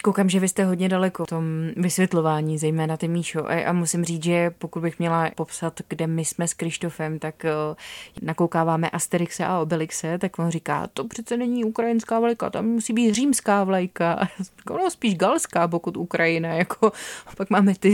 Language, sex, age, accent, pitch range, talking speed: Czech, female, 20-39, native, 160-185 Hz, 175 wpm